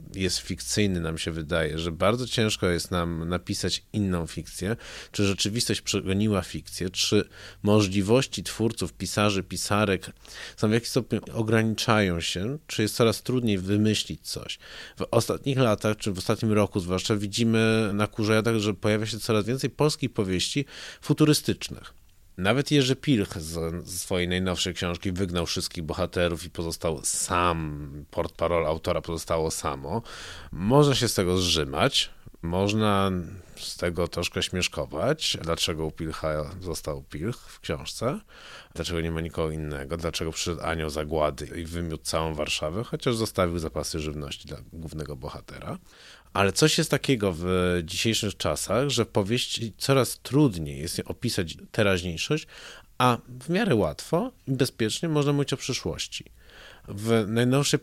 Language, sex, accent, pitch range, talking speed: Polish, male, native, 85-115 Hz, 140 wpm